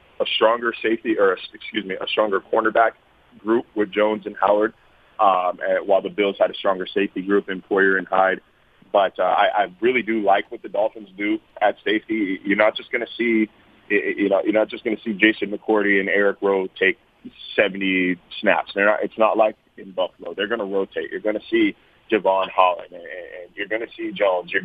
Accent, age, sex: American, 30-49, male